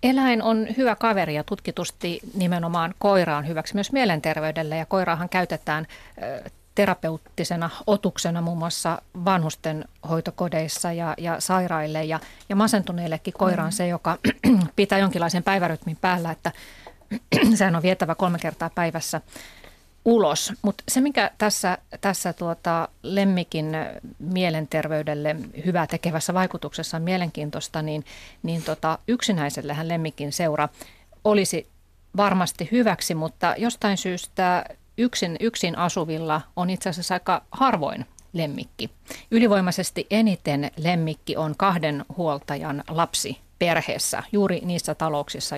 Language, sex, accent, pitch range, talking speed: Finnish, female, native, 160-195 Hz, 115 wpm